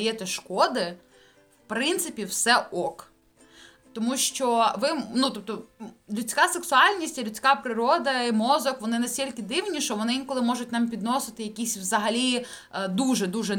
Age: 20-39